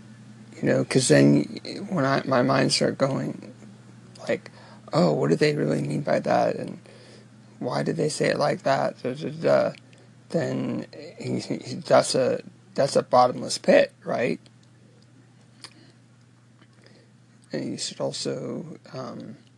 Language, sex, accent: English, male, American